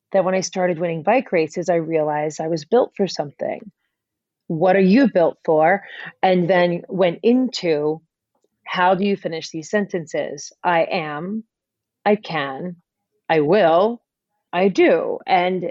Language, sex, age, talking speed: English, female, 30-49, 145 wpm